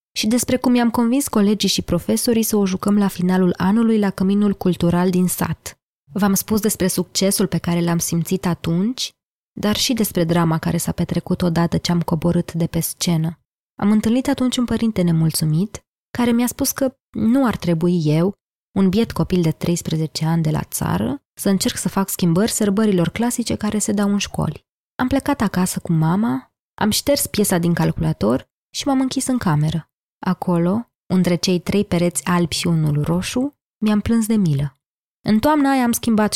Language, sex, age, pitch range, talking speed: Romanian, female, 20-39, 165-210 Hz, 180 wpm